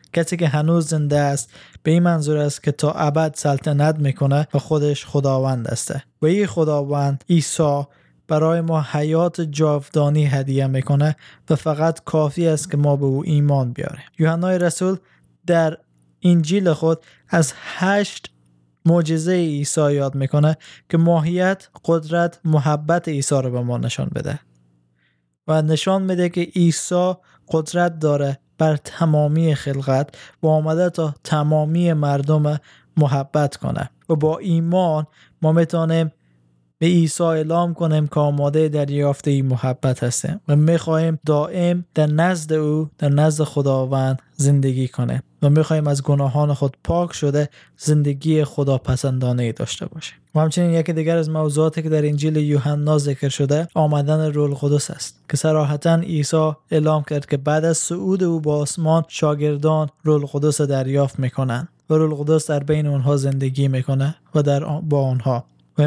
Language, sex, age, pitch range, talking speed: Persian, male, 20-39, 140-160 Hz, 145 wpm